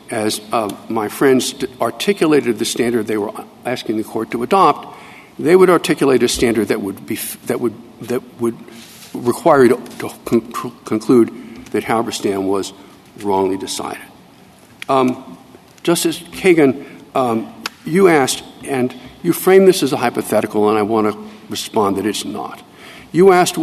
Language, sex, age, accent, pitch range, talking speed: English, male, 60-79, American, 115-165 Hz, 150 wpm